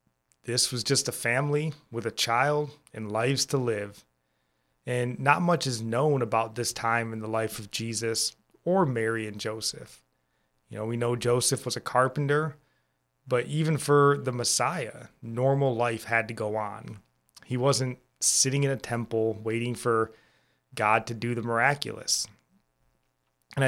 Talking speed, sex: 155 wpm, male